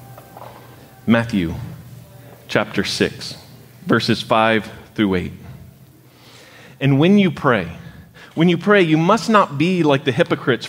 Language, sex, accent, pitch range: English, male, American, 125-175 Hz